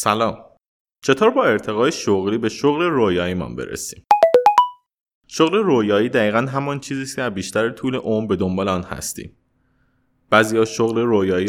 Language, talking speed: Persian, 135 wpm